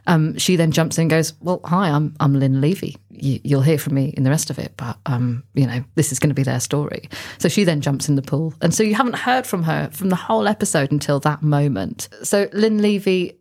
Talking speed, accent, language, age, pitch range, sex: 255 wpm, British, English, 30-49, 155-180 Hz, female